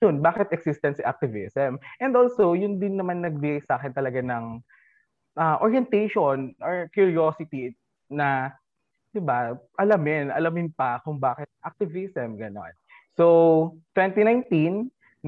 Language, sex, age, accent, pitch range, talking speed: Filipino, male, 20-39, native, 130-175 Hz, 120 wpm